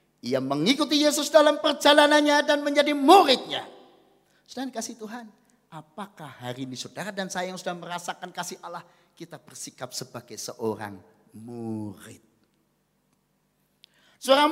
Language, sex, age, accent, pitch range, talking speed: Indonesian, male, 40-59, native, 195-310 Hz, 115 wpm